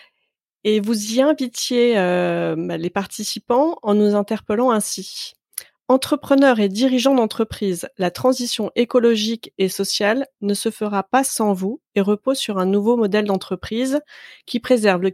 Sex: female